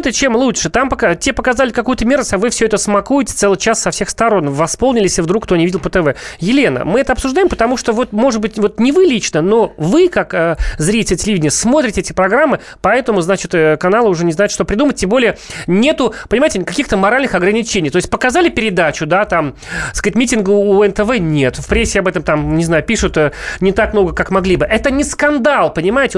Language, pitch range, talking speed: Russian, 160-225 Hz, 215 wpm